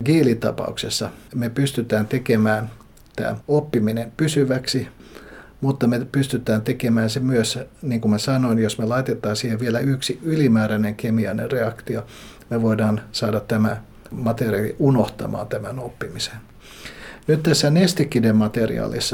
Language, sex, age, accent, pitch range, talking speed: Finnish, male, 60-79, native, 110-130 Hz, 115 wpm